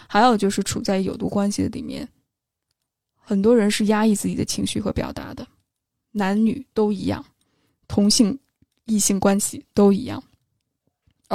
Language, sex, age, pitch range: Chinese, female, 10-29, 205-250 Hz